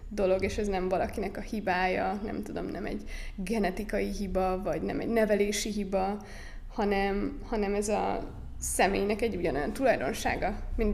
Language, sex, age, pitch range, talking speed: Hungarian, female, 20-39, 200-225 Hz, 150 wpm